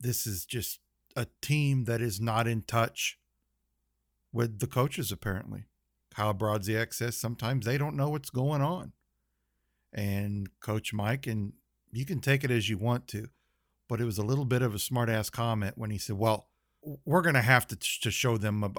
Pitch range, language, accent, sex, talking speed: 100-120 Hz, English, American, male, 190 wpm